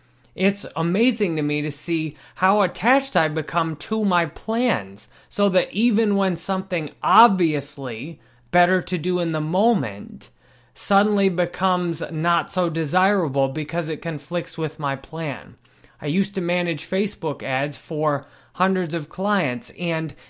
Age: 20-39